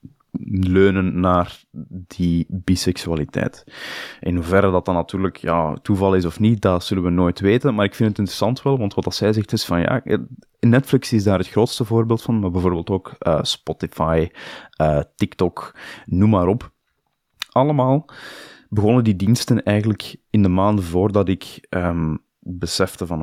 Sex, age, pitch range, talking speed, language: male, 20-39, 90-110 Hz, 165 wpm, Dutch